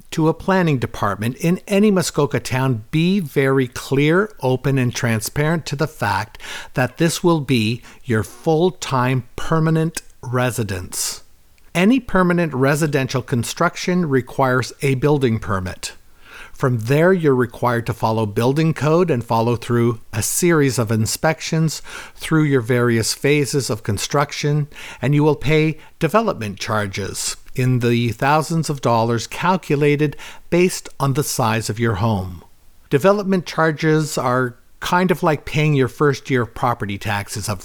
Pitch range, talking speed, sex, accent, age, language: 115-155 Hz, 140 wpm, male, American, 50-69, English